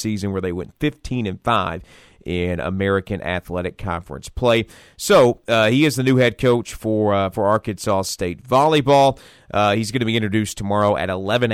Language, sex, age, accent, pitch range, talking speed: English, male, 40-59, American, 90-125 Hz, 180 wpm